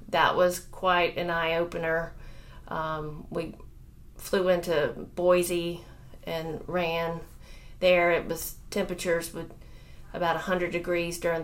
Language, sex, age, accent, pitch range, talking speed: English, female, 30-49, American, 155-175 Hz, 120 wpm